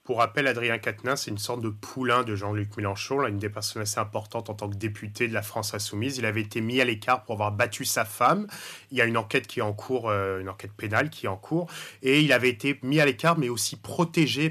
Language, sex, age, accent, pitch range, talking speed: English, male, 30-49, French, 110-135 Hz, 265 wpm